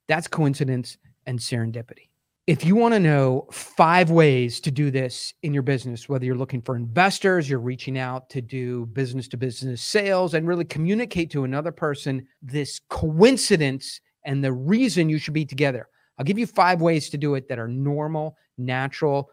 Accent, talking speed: American, 175 wpm